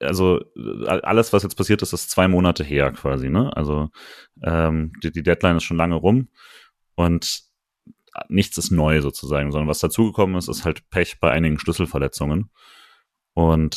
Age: 30-49